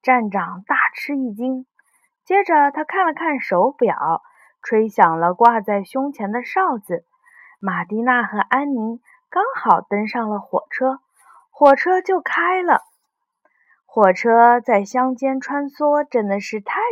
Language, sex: Chinese, female